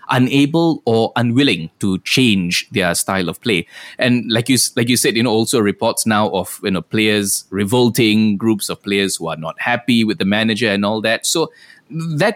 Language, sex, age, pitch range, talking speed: English, male, 20-39, 105-135 Hz, 195 wpm